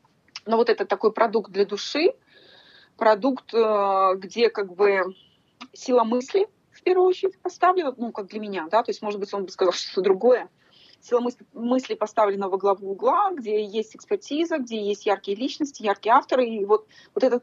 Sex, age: female, 30-49